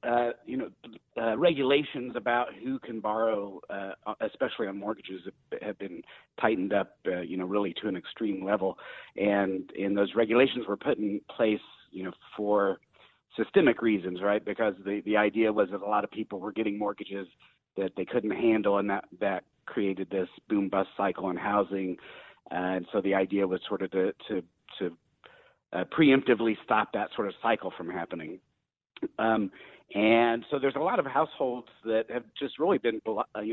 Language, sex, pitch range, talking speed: English, male, 100-120 Hz, 180 wpm